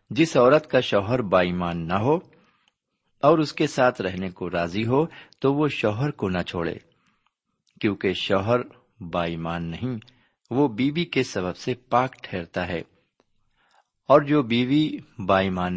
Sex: male